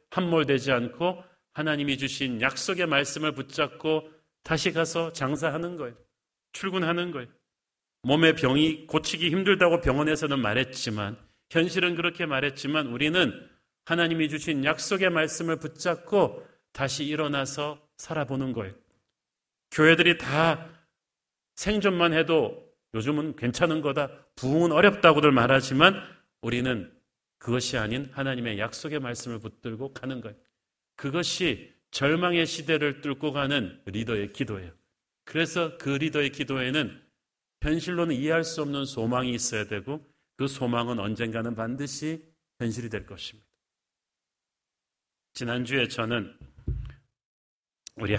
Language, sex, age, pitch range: Korean, male, 40-59, 115-160 Hz